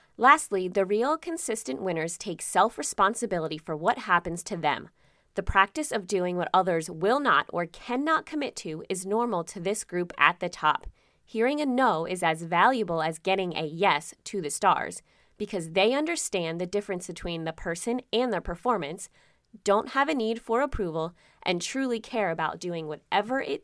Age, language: 20-39, English